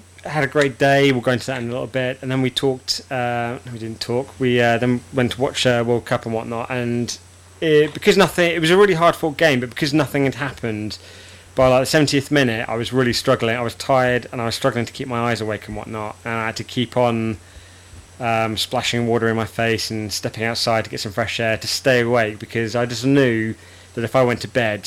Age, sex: 20-39, male